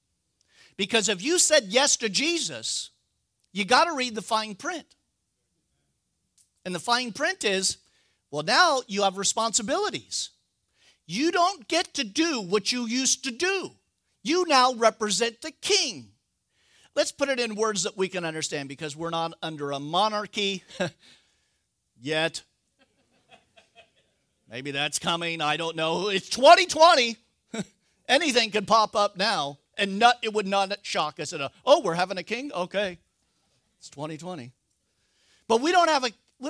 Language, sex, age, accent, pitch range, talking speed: English, male, 50-69, American, 165-250 Hz, 145 wpm